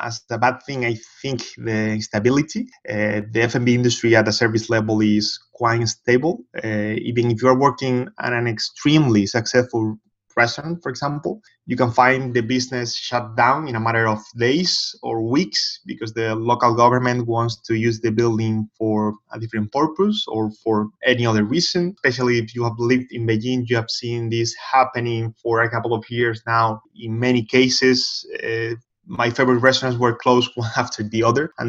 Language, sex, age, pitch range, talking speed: English, male, 20-39, 110-125 Hz, 180 wpm